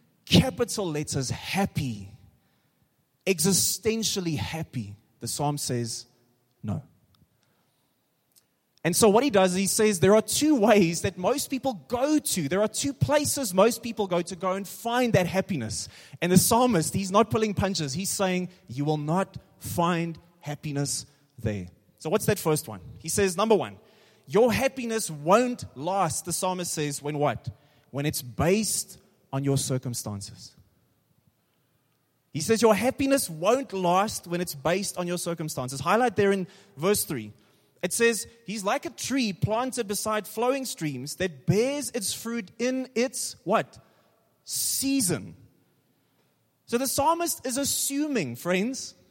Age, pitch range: 20-39, 145-230 Hz